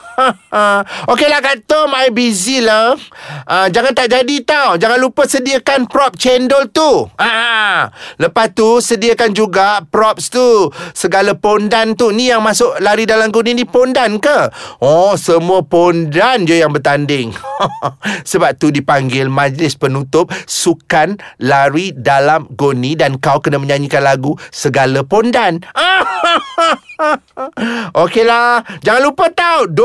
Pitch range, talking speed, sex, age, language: 185-275 Hz, 135 wpm, male, 30-49, Malay